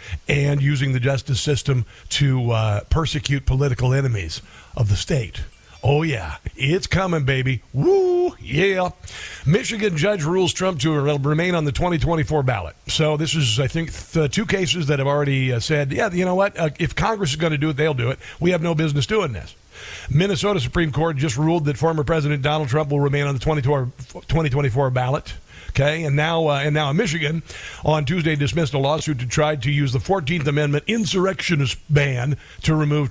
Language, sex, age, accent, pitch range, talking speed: English, male, 50-69, American, 130-160 Hz, 185 wpm